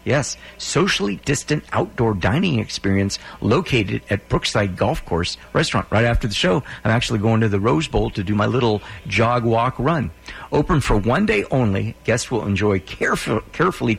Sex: male